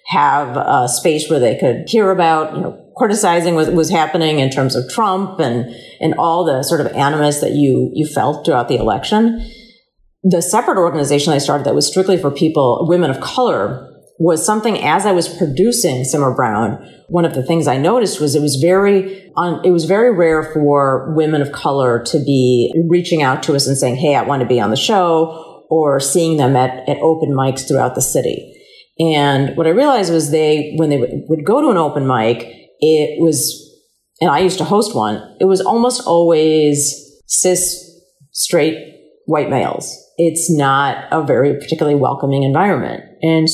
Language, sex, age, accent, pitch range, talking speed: English, female, 40-59, American, 140-175 Hz, 185 wpm